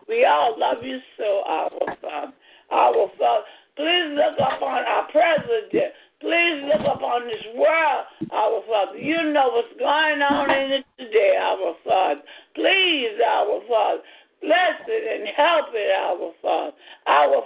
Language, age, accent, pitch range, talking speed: English, 60-79, American, 270-415 Hz, 145 wpm